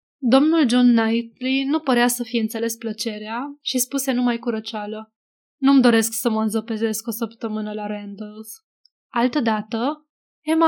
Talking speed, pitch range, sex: 140 wpm, 225-265 Hz, female